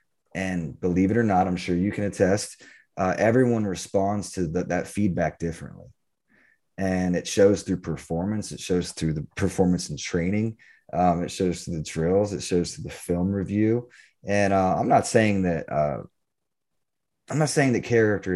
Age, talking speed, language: 20-39, 175 wpm, English